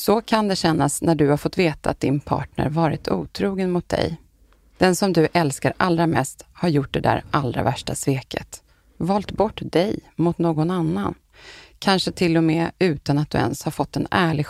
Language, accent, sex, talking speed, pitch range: Swedish, native, female, 195 wpm, 145-180 Hz